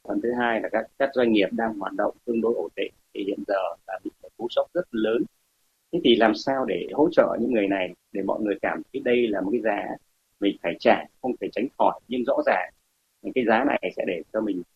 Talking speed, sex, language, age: 250 wpm, male, Vietnamese, 30-49